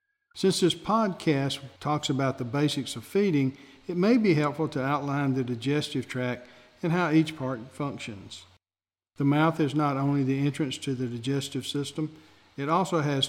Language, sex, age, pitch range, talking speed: English, male, 50-69, 125-155 Hz, 165 wpm